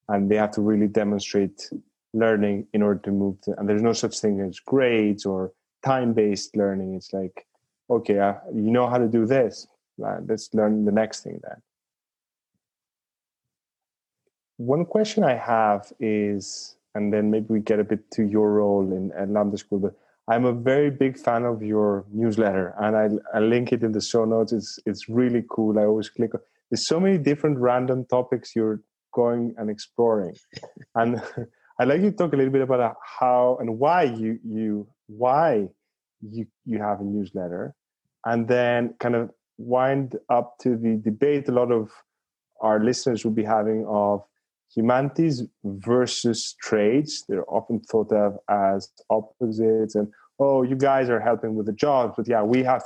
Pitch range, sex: 105-120 Hz, male